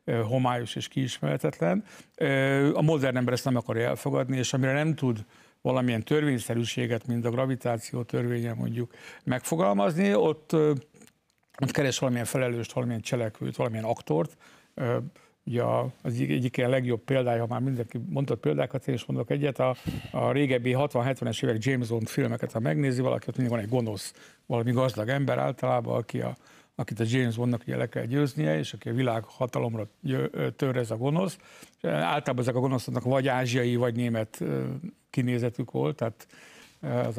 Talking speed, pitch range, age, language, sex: 150 wpm, 120-140 Hz, 60-79, Hungarian, male